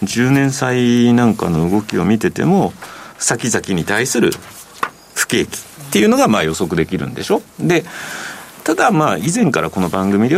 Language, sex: Japanese, male